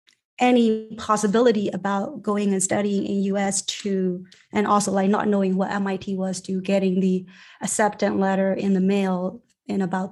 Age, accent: 30-49, American